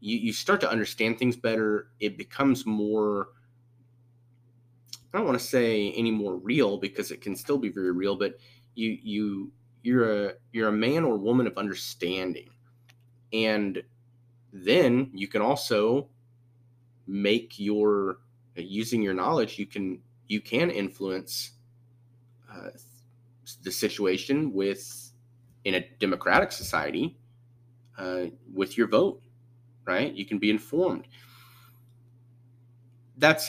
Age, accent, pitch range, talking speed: 30-49, American, 105-120 Hz, 125 wpm